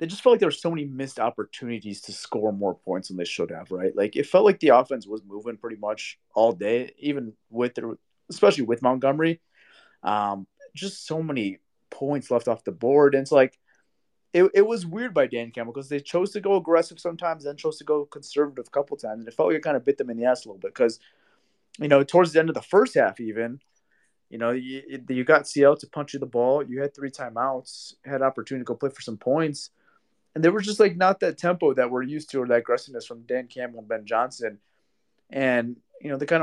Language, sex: English, male